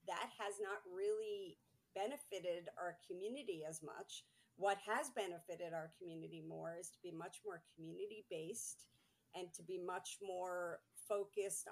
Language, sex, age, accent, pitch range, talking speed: English, female, 50-69, American, 170-210 Hz, 140 wpm